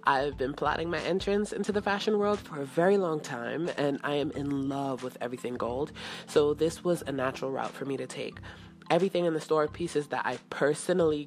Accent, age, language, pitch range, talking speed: American, 20-39, English, 130-170 Hz, 215 wpm